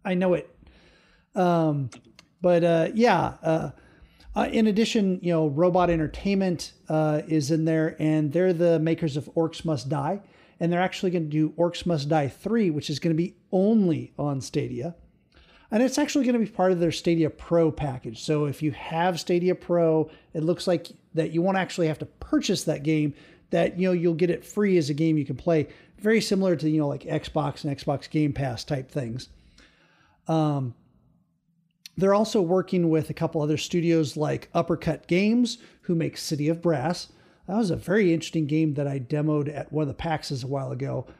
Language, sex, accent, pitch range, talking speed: English, male, American, 150-180 Hz, 195 wpm